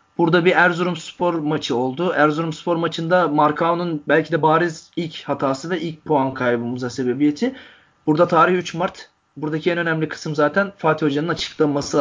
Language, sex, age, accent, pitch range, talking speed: Turkish, male, 30-49, native, 130-165 Hz, 150 wpm